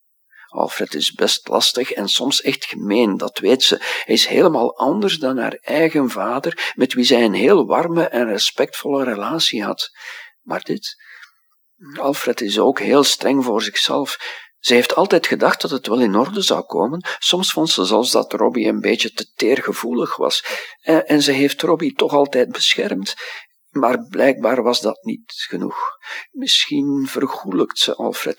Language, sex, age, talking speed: Dutch, male, 50-69, 165 wpm